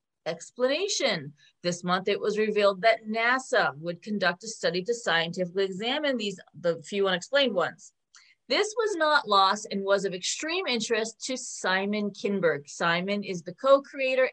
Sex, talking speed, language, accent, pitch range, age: female, 150 wpm, English, American, 180-245 Hz, 40-59